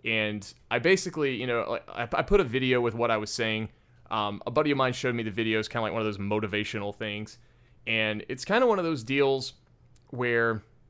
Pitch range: 110-130 Hz